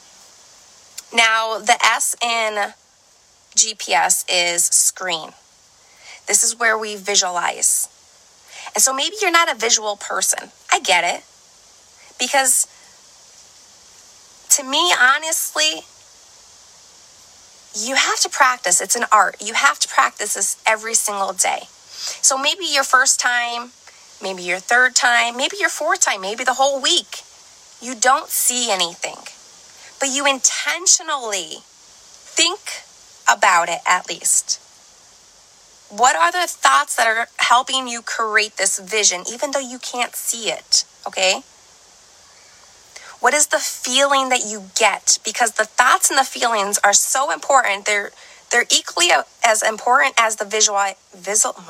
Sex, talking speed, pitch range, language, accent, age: female, 130 wpm, 215-275 Hz, English, American, 20-39